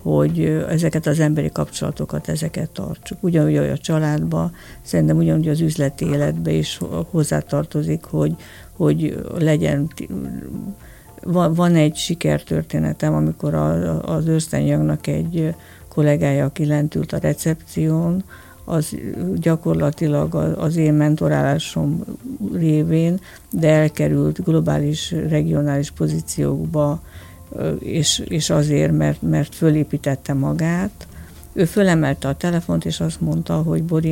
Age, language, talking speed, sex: 50-69, Hungarian, 105 wpm, female